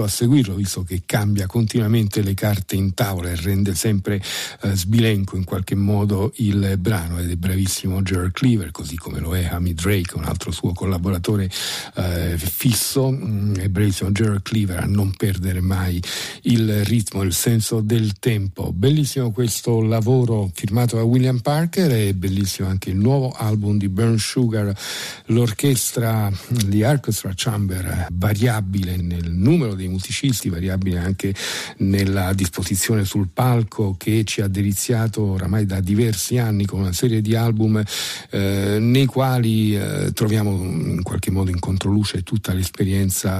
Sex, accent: male, native